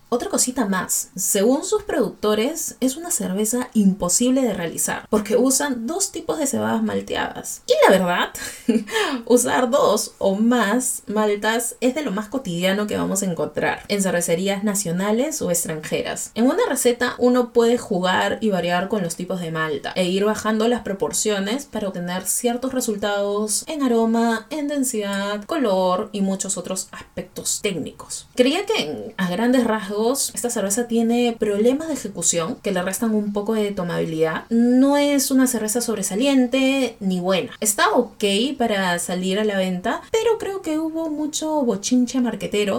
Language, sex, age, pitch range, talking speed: Spanish, female, 20-39, 190-245 Hz, 155 wpm